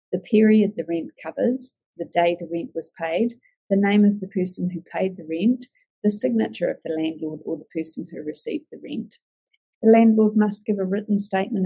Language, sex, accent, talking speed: English, female, Australian, 200 wpm